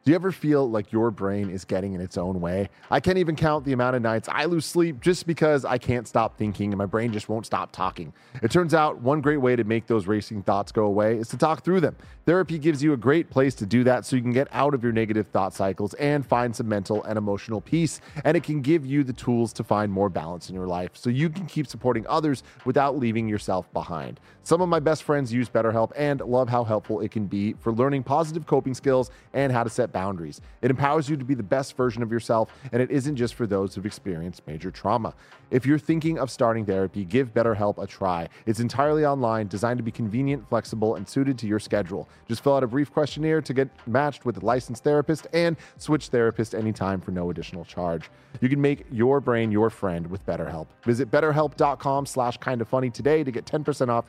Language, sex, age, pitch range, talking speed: English, male, 30-49, 105-145 Hz, 235 wpm